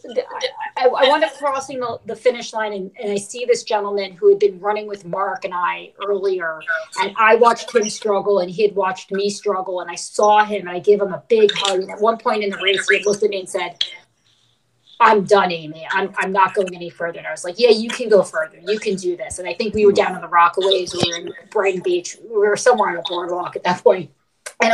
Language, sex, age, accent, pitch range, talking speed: English, female, 30-49, American, 180-220 Hz, 255 wpm